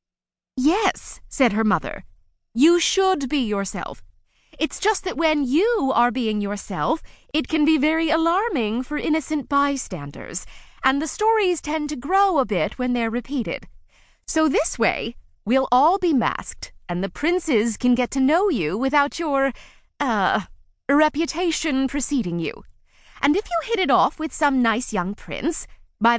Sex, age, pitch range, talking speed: female, 30-49, 220-315 Hz, 155 wpm